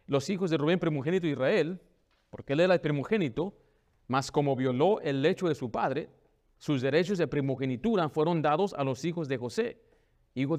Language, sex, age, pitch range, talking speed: Spanish, male, 40-59, 130-185 Hz, 180 wpm